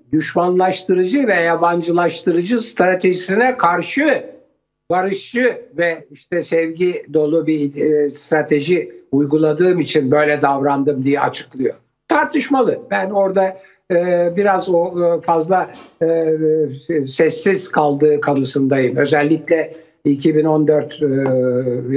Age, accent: 60-79, native